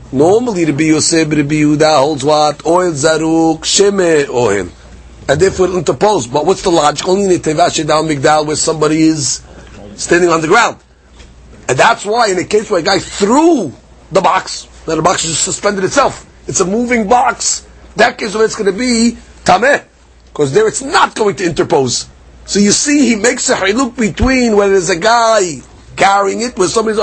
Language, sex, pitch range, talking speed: English, male, 160-220 Hz, 195 wpm